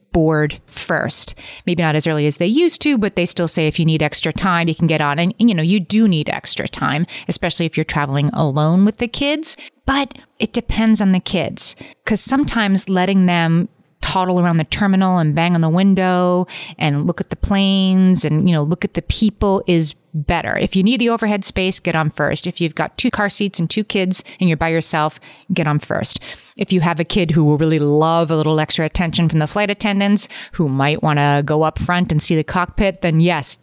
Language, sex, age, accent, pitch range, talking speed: English, female, 30-49, American, 155-205 Hz, 225 wpm